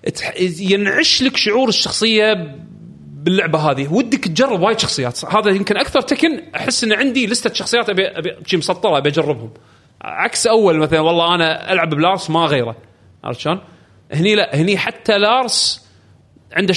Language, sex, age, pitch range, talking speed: Arabic, male, 30-49, 135-200 Hz, 140 wpm